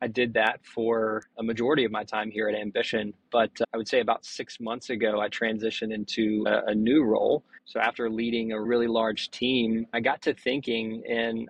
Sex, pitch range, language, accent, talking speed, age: male, 110-125 Hz, English, American, 210 wpm, 20-39